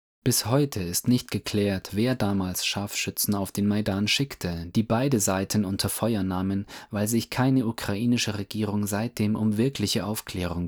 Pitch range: 100-115 Hz